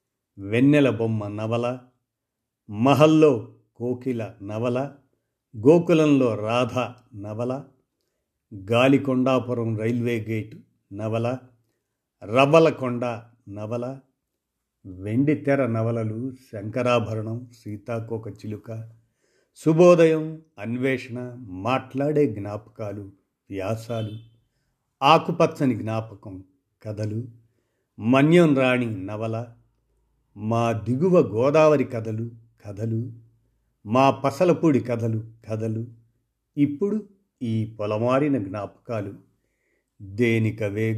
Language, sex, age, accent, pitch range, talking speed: Telugu, male, 50-69, native, 110-135 Hz, 65 wpm